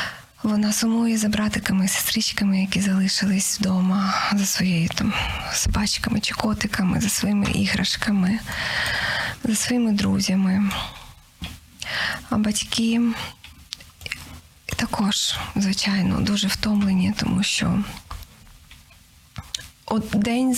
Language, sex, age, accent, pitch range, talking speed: Ukrainian, female, 20-39, native, 200-230 Hz, 90 wpm